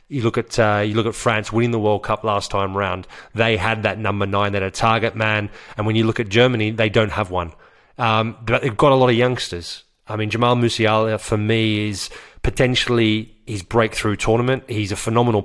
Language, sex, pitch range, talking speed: English, male, 105-120 Hz, 220 wpm